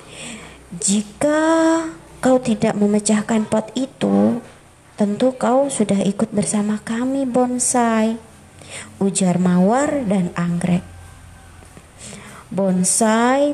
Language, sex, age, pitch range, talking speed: Indonesian, male, 20-39, 190-270 Hz, 80 wpm